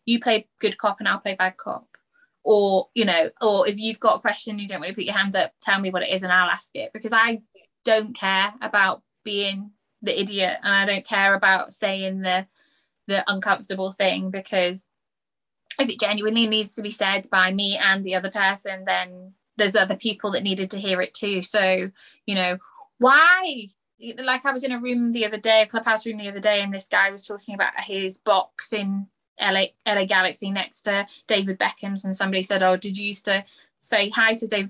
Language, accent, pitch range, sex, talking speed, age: English, British, 195-235 Hz, female, 215 wpm, 20-39